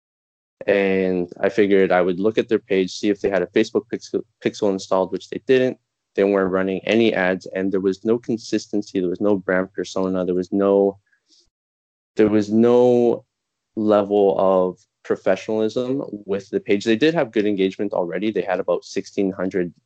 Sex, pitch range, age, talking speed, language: male, 95-105 Hz, 20-39, 175 wpm, English